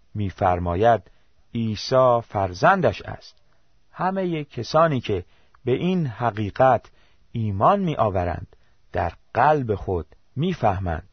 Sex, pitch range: male, 95-135 Hz